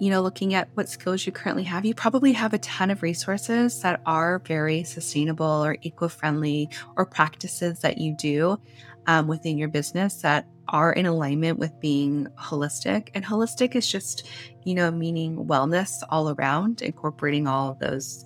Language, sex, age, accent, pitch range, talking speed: English, female, 20-39, American, 150-195 Hz, 170 wpm